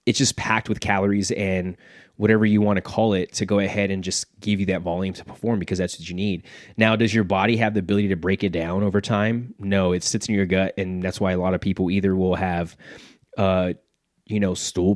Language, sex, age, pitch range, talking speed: English, male, 20-39, 95-110 Hz, 245 wpm